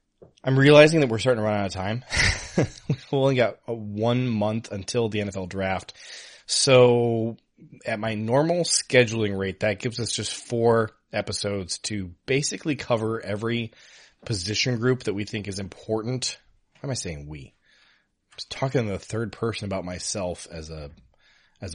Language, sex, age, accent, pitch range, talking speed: English, male, 20-39, American, 100-120 Hz, 165 wpm